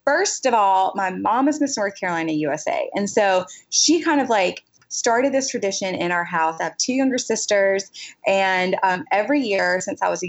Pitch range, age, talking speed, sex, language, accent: 180-220 Hz, 20-39, 205 wpm, female, English, American